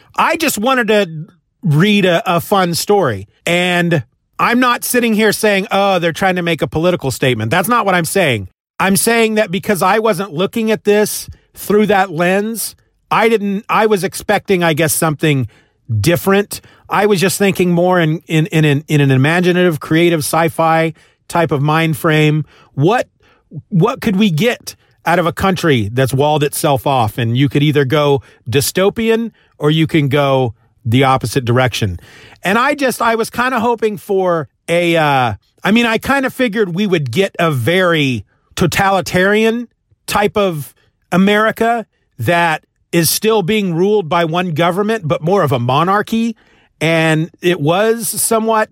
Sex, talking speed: male, 170 wpm